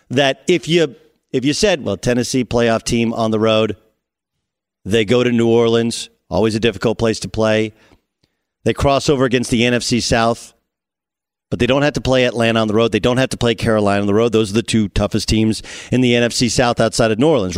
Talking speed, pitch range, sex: 220 wpm, 115-165 Hz, male